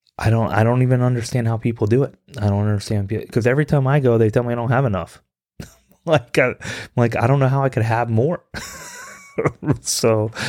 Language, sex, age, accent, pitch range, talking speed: English, male, 20-39, American, 95-115 Hz, 210 wpm